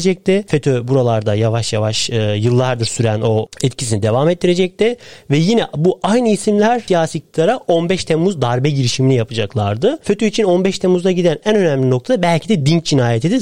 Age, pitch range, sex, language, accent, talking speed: 40-59, 135-180 Hz, male, Turkish, native, 150 wpm